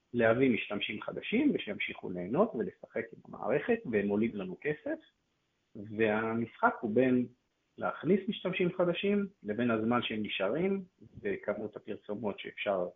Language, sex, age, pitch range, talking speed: Hebrew, male, 40-59, 110-150 Hz, 110 wpm